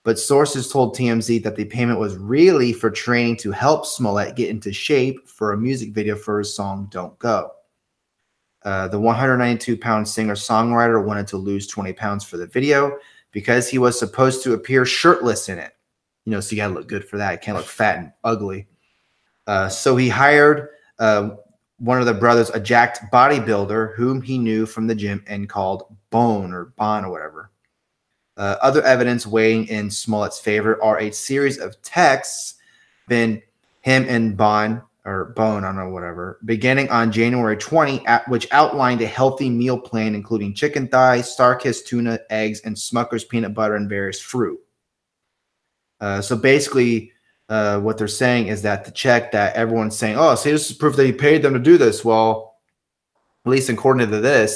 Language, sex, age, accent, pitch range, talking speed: English, male, 30-49, American, 105-125 Hz, 185 wpm